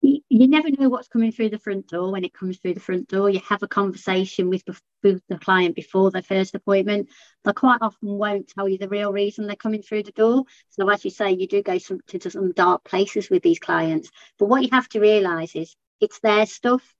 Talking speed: 235 wpm